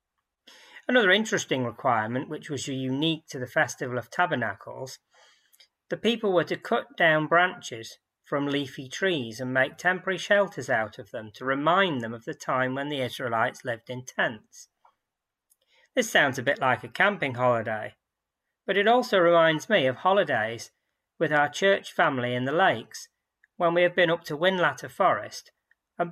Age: 40-59